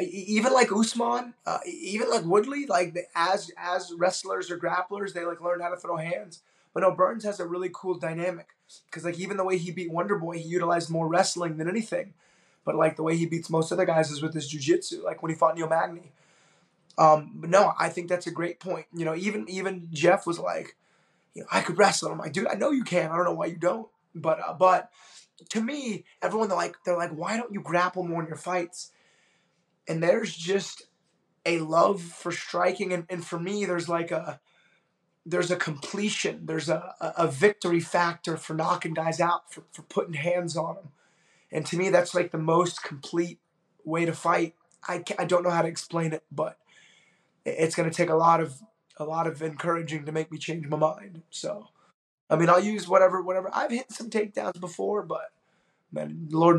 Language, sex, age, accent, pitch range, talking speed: English, male, 20-39, American, 165-185 Hz, 210 wpm